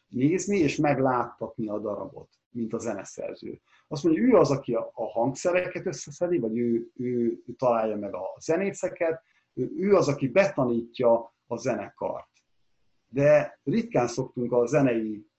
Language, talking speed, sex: Hungarian, 140 wpm, male